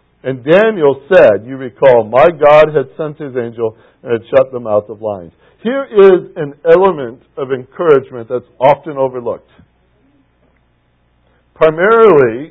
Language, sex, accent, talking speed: English, male, American, 135 wpm